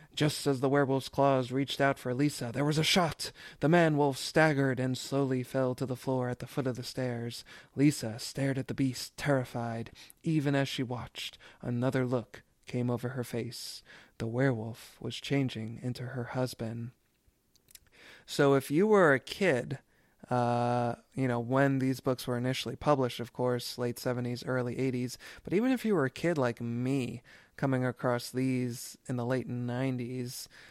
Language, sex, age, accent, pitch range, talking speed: English, male, 20-39, American, 120-135 Hz, 170 wpm